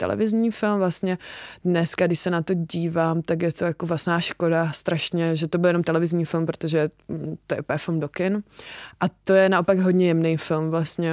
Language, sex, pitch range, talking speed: English, female, 160-190 Hz, 200 wpm